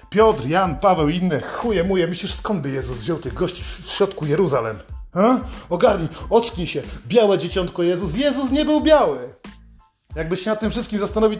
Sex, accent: male, native